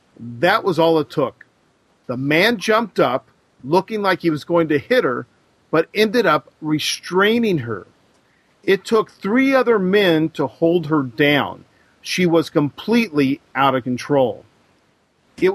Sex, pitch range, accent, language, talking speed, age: male, 140-185 Hz, American, English, 145 wpm, 40-59